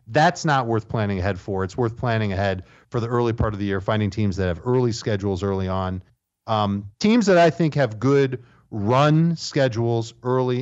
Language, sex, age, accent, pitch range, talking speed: English, male, 40-59, American, 100-125 Hz, 200 wpm